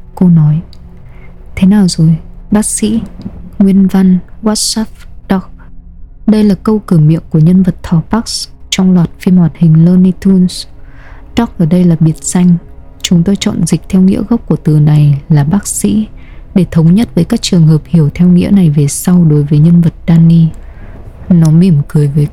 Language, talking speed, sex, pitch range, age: Vietnamese, 185 wpm, female, 155-200 Hz, 20-39